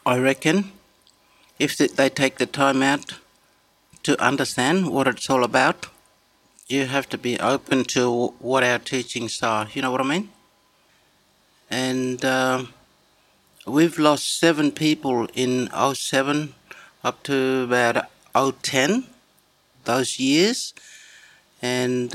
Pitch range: 125-140 Hz